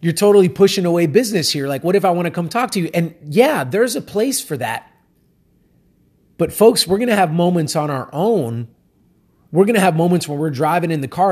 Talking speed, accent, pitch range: 235 wpm, American, 135-170 Hz